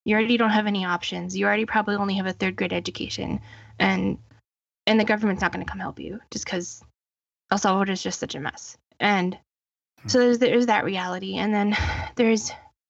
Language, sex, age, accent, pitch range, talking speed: English, female, 10-29, American, 200-245 Hz, 200 wpm